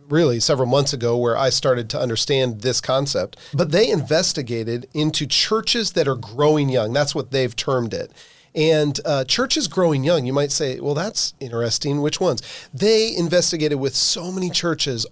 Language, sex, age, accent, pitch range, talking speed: English, male, 40-59, American, 140-180 Hz, 175 wpm